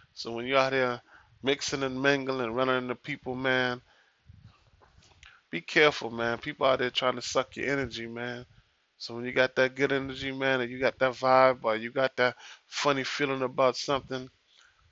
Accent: American